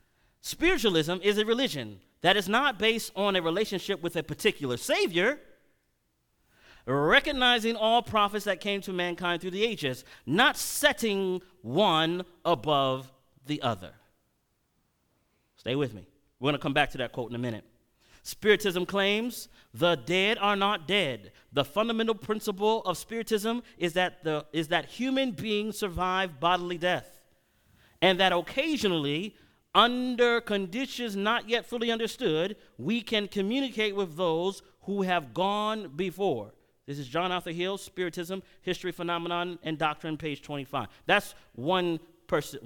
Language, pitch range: English, 160-210 Hz